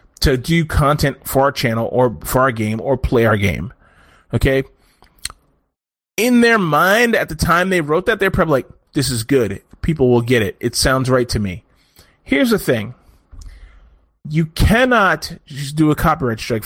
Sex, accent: male, American